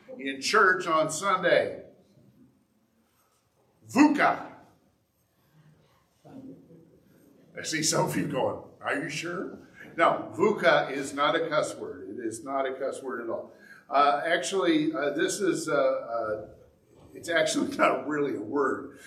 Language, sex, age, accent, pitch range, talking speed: English, male, 50-69, American, 130-175 Hz, 130 wpm